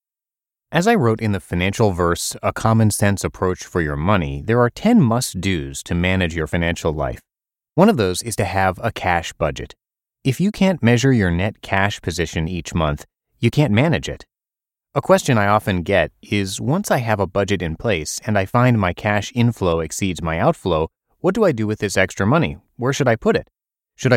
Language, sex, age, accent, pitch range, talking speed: English, male, 30-49, American, 90-120 Hz, 205 wpm